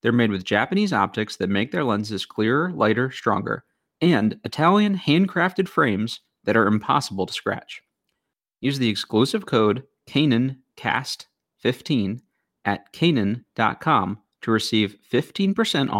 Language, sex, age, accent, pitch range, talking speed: English, male, 30-49, American, 105-125 Hz, 115 wpm